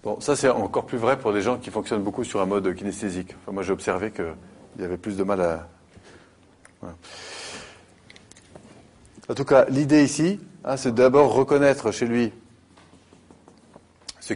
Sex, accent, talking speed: male, French, 165 wpm